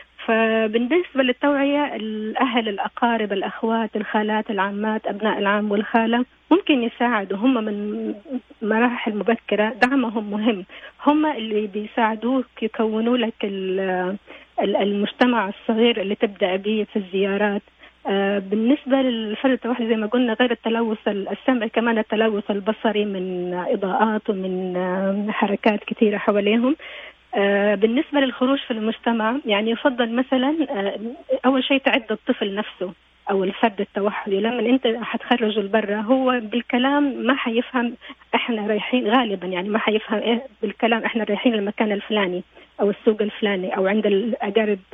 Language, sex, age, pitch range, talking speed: Arabic, female, 30-49, 210-250 Hz, 120 wpm